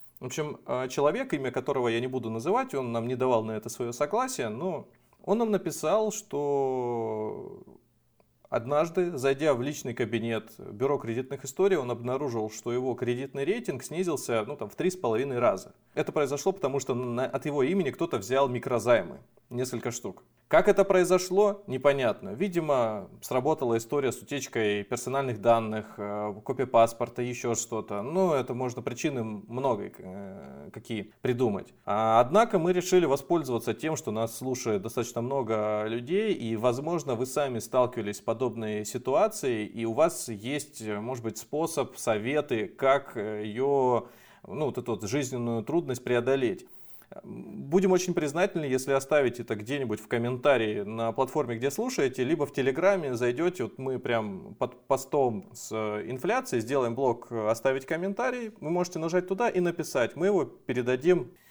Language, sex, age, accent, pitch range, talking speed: Russian, male, 30-49, native, 115-155 Hz, 145 wpm